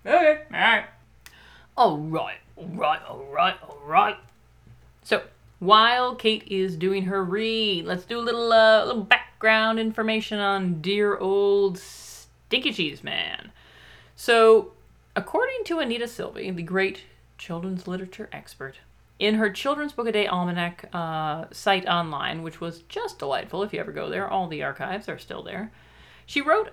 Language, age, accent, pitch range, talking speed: English, 40-59, American, 170-225 Hz, 145 wpm